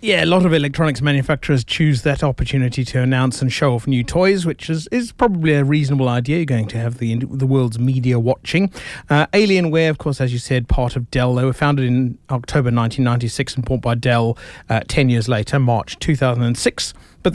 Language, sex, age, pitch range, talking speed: English, male, 30-49, 115-145 Hz, 205 wpm